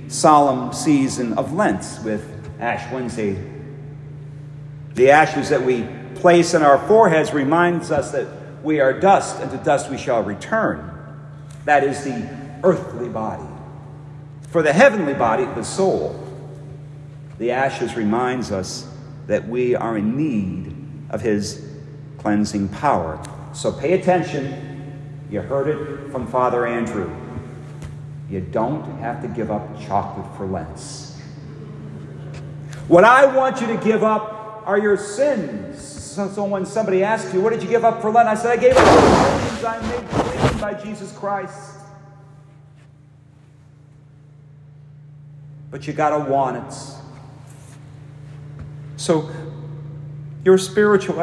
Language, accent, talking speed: English, American, 130 wpm